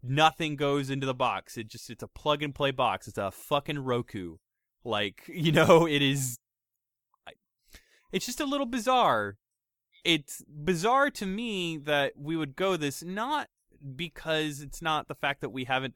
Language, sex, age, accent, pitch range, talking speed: English, male, 20-39, American, 125-165 Hz, 160 wpm